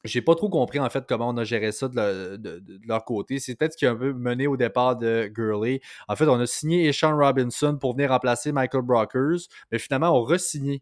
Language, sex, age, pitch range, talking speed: French, male, 20-39, 120-140 Hz, 255 wpm